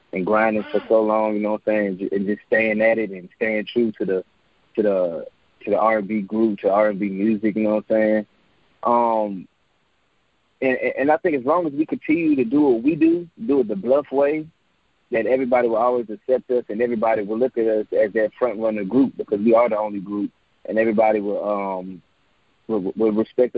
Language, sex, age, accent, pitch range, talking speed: English, male, 20-39, American, 105-125 Hz, 215 wpm